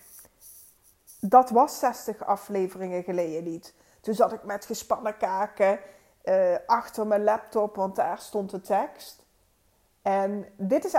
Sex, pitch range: female, 185-245 Hz